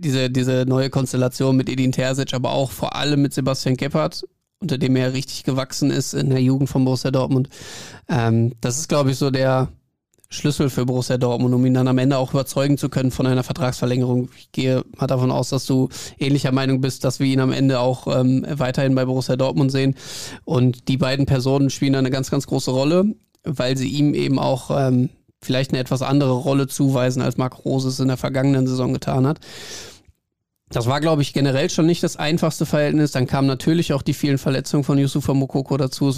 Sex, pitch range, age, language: male, 130-140 Hz, 20-39, German